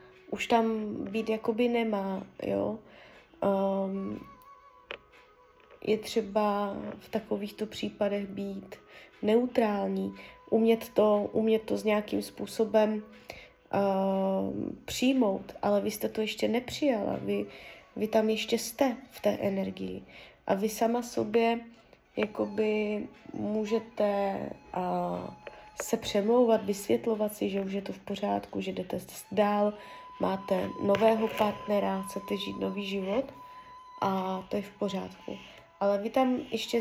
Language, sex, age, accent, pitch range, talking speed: Czech, female, 20-39, native, 195-225 Hz, 115 wpm